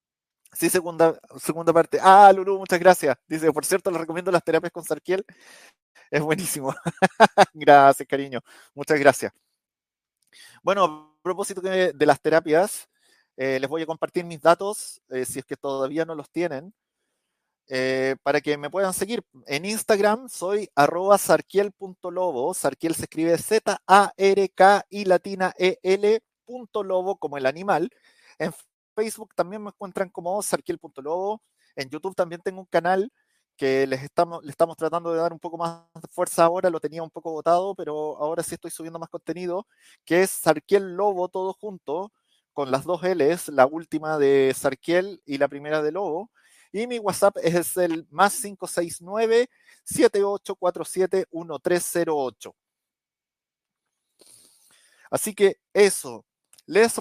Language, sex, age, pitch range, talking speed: Spanish, male, 30-49, 155-195 Hz, 135 wpm